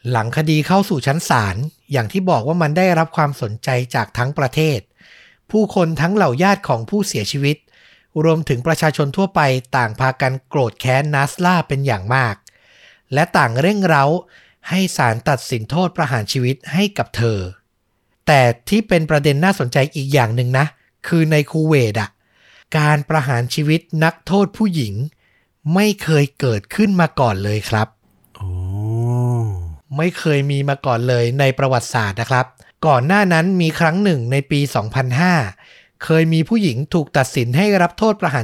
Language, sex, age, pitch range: Thai, male, 60-79, 125-165 Hz